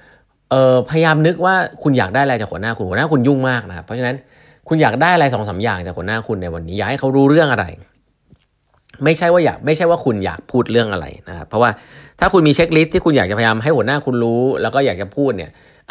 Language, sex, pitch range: Thai, male, 95-125 Hz